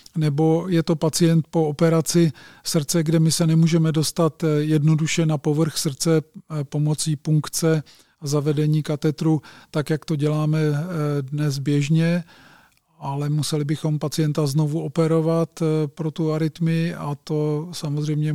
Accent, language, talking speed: native, Czech, 125 wpm